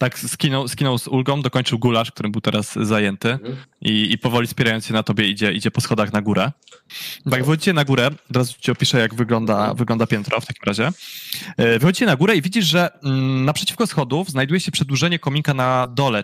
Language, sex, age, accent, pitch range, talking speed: Polish, male, 20-39, native, 115-150 Hz, 200 wpm